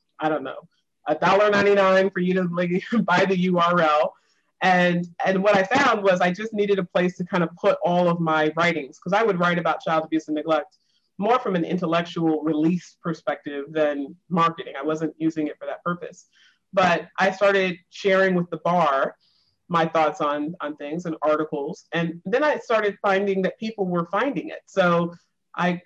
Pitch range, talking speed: 165-200 Hz, 185 wpm